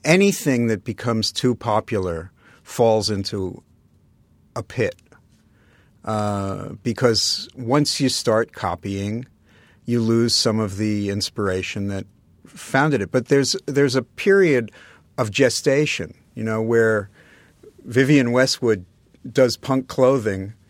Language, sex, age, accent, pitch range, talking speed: English, male, 50-69, American, 100-125 Hz, 115 wpm